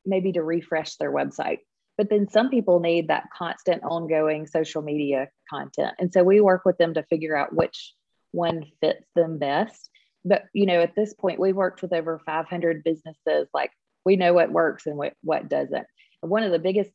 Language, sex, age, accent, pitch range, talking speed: English, female, 30-49, American, 160-200 Hz, 200 wpm